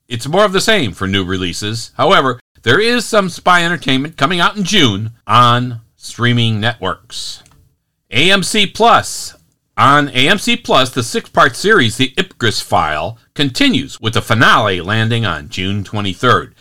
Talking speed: 145 wpm